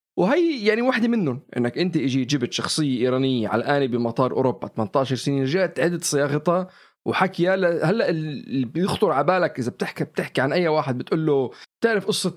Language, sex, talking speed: Arabic, male, 175 wpm